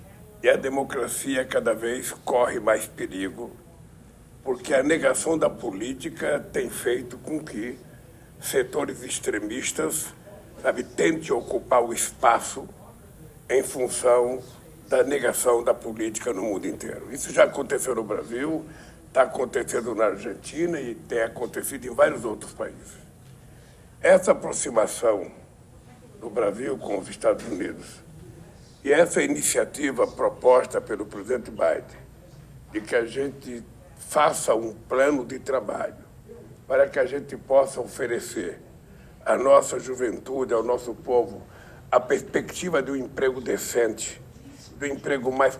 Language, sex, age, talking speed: Portuguese, male, 60-79, 125 wpm